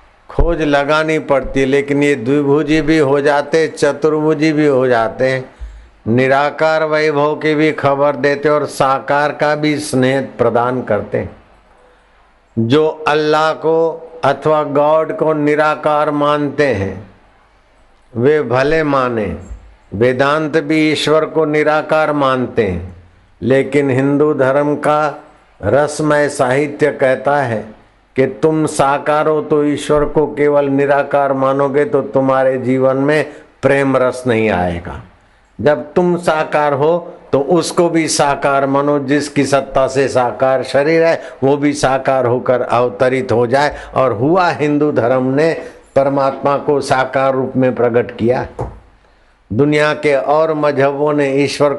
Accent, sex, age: native, male, 60-79